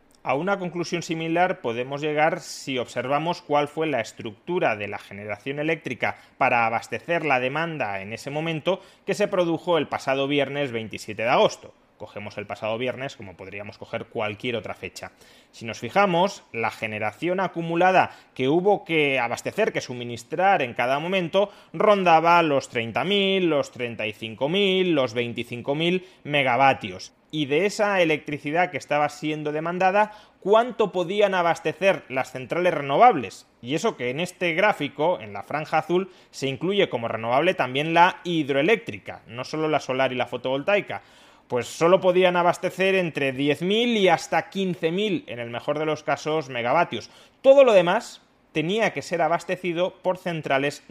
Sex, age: male, 30-49